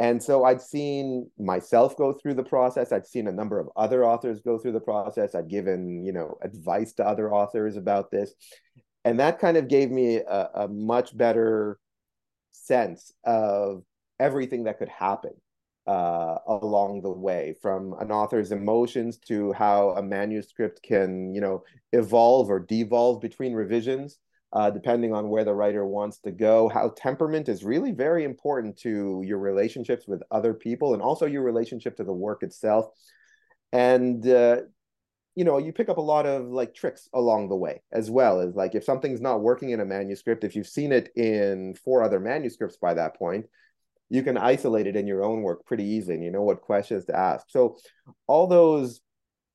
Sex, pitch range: male, 100-125 Hz